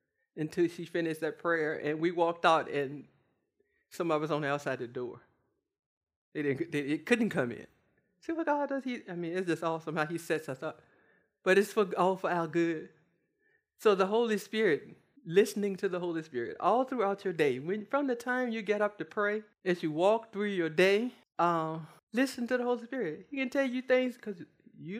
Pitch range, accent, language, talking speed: 155-210 Hz, American, English, 215 wpm